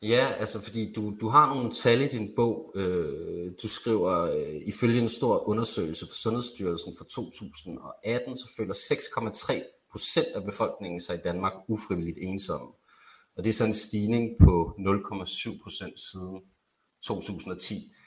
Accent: native